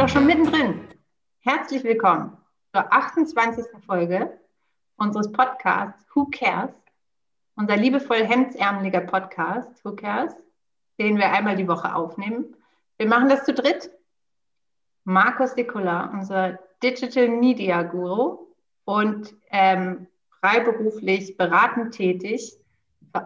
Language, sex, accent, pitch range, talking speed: German, female, German, 190-240 Hz, 105 wpm